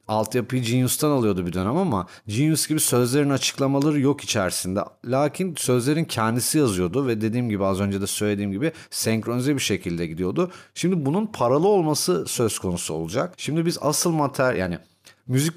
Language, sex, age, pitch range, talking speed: Turkish, male, 40-59, 110-150 Hz, 160 wpm